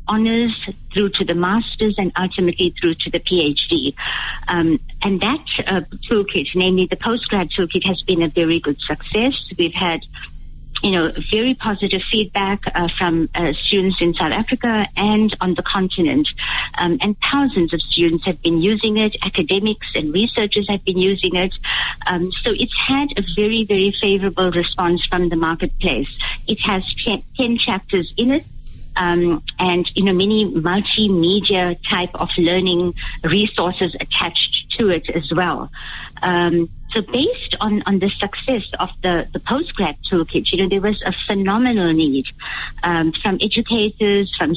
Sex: female